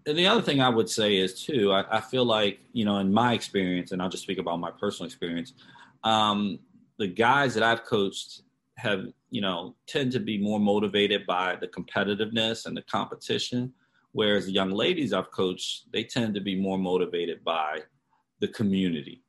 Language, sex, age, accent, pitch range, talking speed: English, male, 30-49, American, 95-115 Hz, 190 wpm